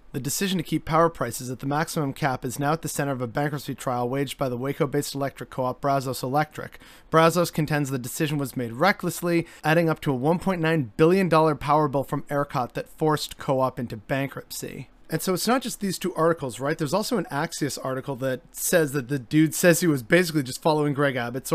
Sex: male